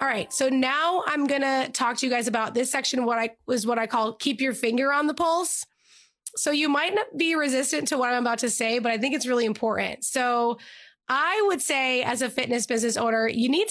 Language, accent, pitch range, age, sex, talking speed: English, American, 235-285 Hz, 20-39, female, 245 wpm